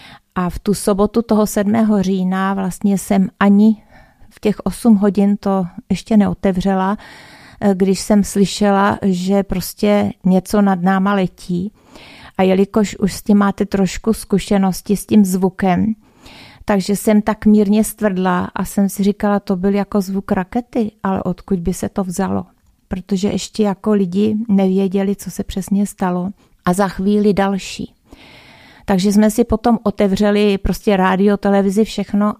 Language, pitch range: Czech, 185-205 Hz